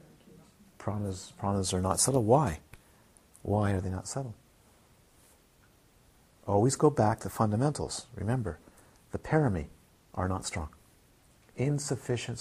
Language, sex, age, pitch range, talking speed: English, male, 50-69, 95-125 Hz, 110 wpm